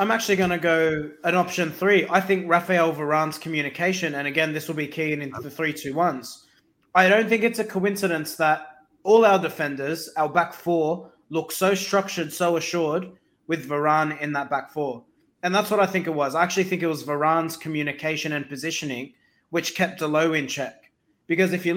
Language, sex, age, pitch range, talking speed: English, male, 20-39, 160-210 Hz, 200 wpm